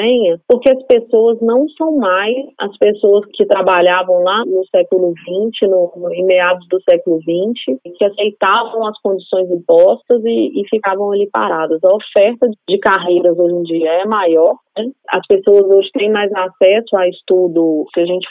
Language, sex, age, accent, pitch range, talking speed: Portuguese, female, 20-39, Brazilian, 180-240 Hz, 170 wpm